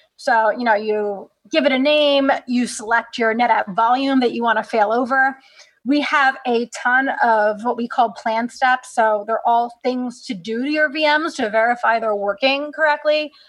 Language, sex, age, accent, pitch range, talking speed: English, female, 30-49, American, 230-280 Hz, 185 wpm